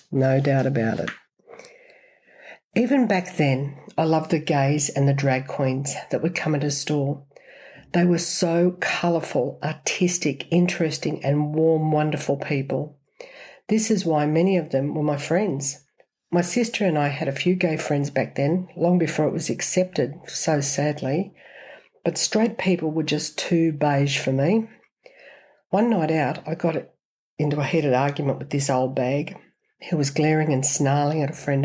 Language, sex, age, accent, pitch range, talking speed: English, female, 60-79, Australian, 145-180 Hz, 165 wpm